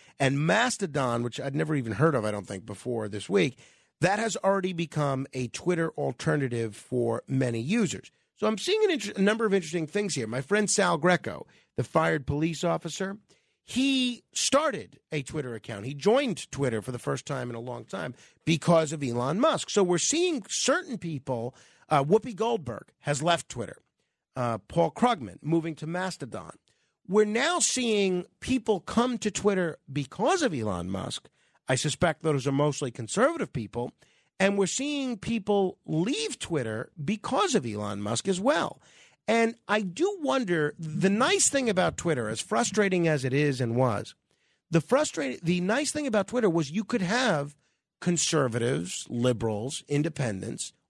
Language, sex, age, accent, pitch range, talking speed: English, male, 50-69, American, 135-215 Hz, 165 wpm